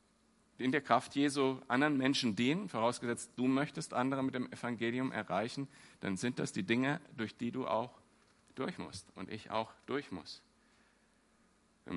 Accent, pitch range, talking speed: German, 100-130 Hz, 160 wpm